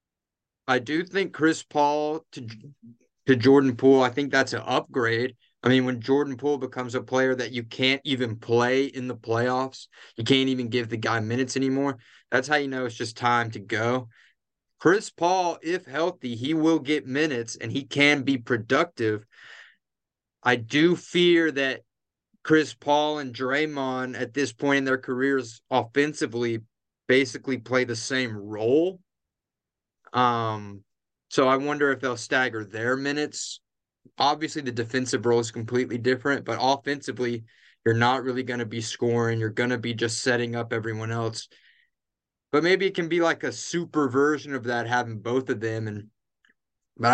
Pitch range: 120-140 Hz